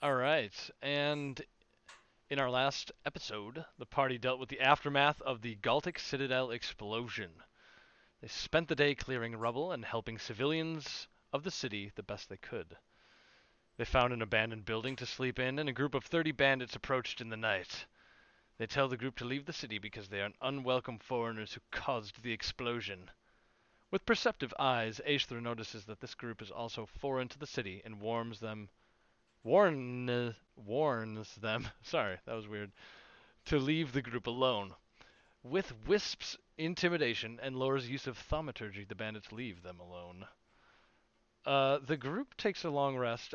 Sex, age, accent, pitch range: male, 30-49, American, 115-140 Hz